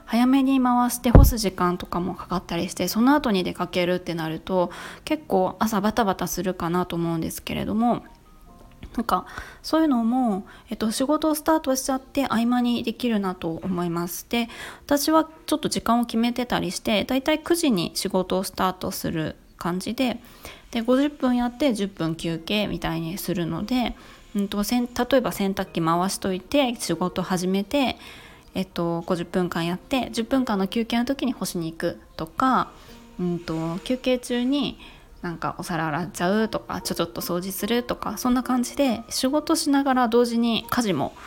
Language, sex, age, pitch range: Japanese, female, 20-39, 180-255 Hz